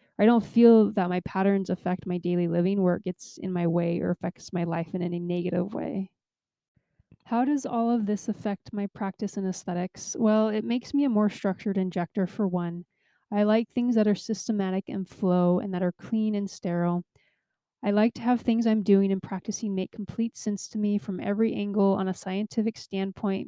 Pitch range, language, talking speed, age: 185-215 Hz, English, 200 wpm, 20-39